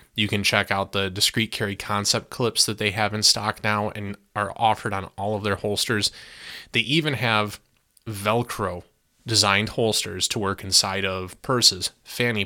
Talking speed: 170 wpm